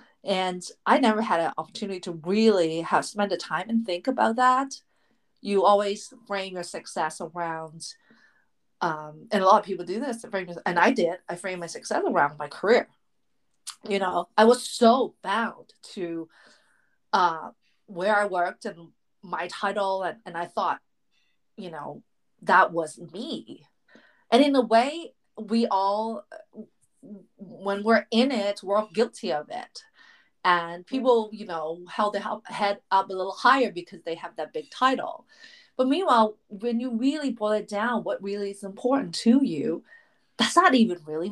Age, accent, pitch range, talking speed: 40-59, American, 180-245 Hz, 165 wpm